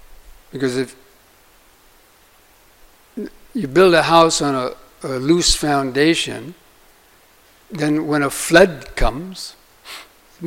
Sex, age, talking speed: male, 60-79, 95 wpm